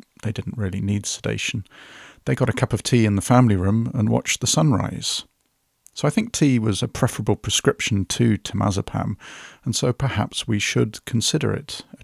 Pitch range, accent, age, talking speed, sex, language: 100-125 Hz, British, 50-69, 185 wpm, male, English